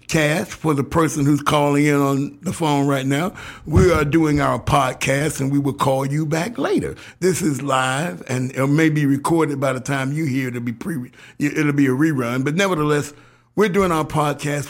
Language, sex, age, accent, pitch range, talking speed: English, male, 60-79, American, 130-155 Hz, 205 wpm